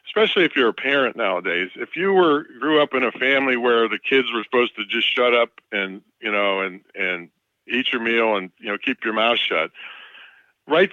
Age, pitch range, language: 50-69, 110-145 Hz, English